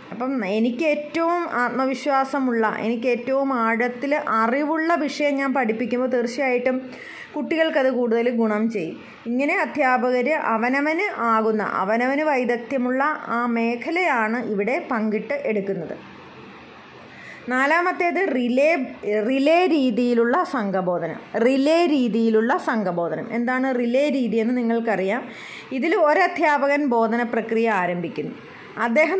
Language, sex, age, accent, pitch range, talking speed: Malayalam, female, 20-39, native, 230-285 Hz, 90 wpm